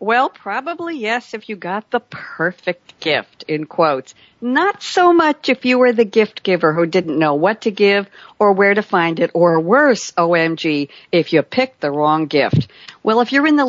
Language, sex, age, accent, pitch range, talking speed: English, female, 60-79, American, 170-240 Hz, 195 wpm